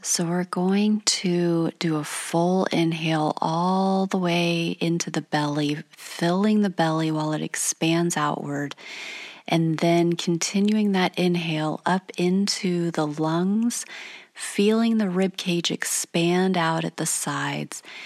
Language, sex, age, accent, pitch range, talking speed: English, female, 30-49, American, 165-200 Hz, 125 wpm